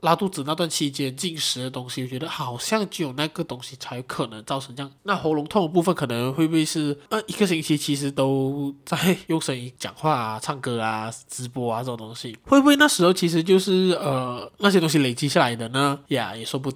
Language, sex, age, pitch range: Chinese, male, 20-39, 130-175 Hz